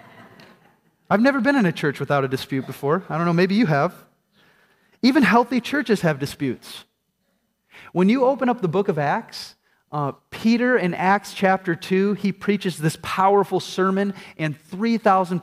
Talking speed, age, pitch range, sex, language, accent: 165 wpm, 30-49, 165-225 Hz, male, English, American